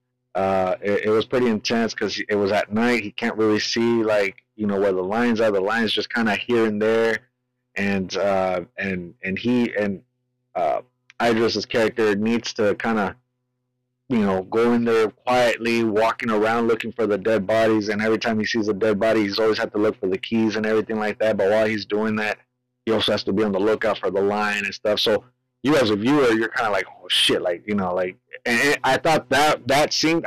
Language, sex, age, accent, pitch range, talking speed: English, male, 30-49, American, 105-125 Hz, 230 wpm